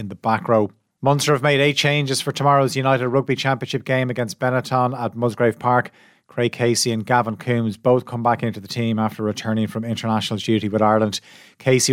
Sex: male